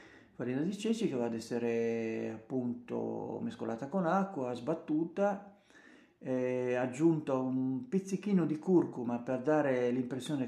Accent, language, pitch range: native, Italian, 120-160 Hz